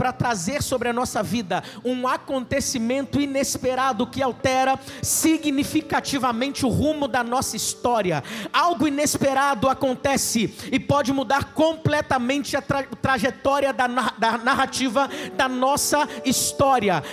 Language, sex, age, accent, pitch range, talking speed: Portuguese, male, 50-69, Brazilian, 275-340 Hz, 110 wpm